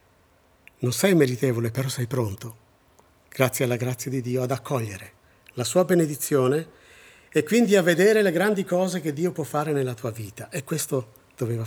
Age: 50-69